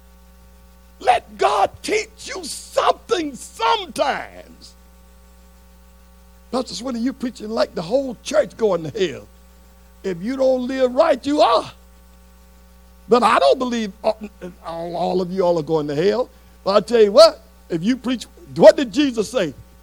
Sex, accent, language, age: male, American, English, 60-79